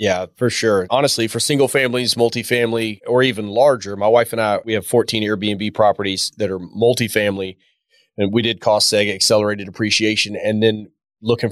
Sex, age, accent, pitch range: male, 30-49, American, 100-115 Hz